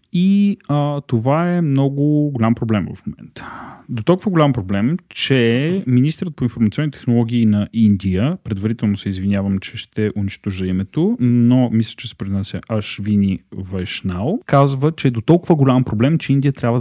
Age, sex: 30-49, male